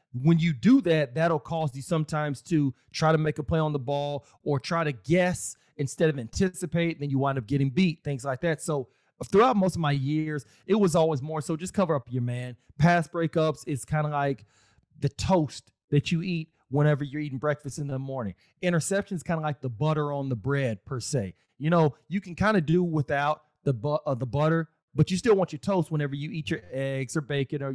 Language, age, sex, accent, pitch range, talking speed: English, 30-49, male, American, 140-170 Hz, 230 wpm